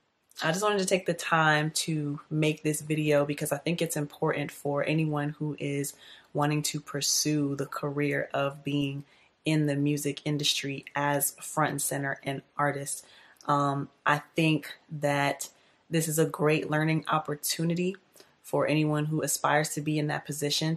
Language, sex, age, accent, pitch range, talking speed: English, female, 20-39, American, 145-160 Hz, 160 wpm